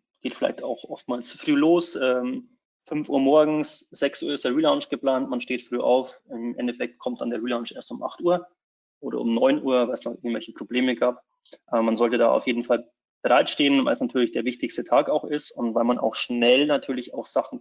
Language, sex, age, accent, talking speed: German, male, 30-49, German, 220 wpm